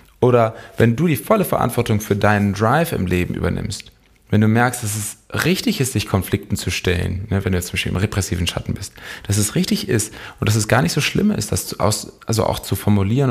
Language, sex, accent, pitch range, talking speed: German, male, German, 100-120 Hz, 225 wpm